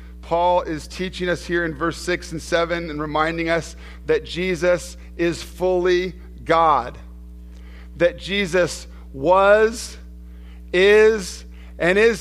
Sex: male